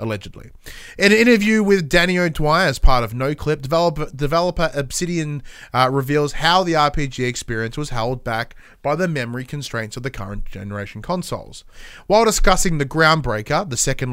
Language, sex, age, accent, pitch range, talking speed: English, male, 20-39, Australian, 125-165 Hz, 160 wpm